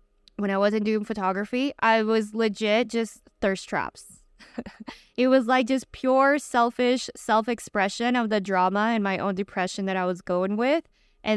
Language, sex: English, female